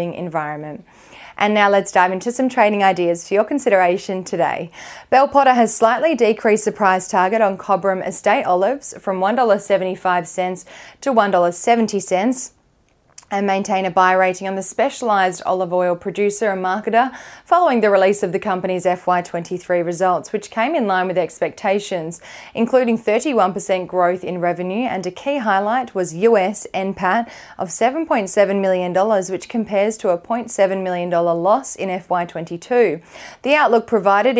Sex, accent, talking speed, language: female, Australian, 145 wpm, English